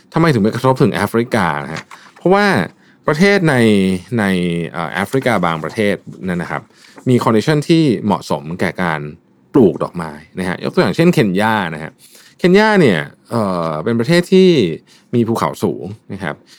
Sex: male